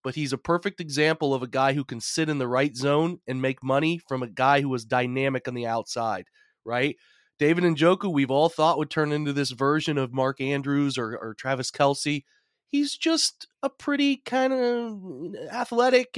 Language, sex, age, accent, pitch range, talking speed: English, male, 30-49, American, 135-185 Hz, 195 wpm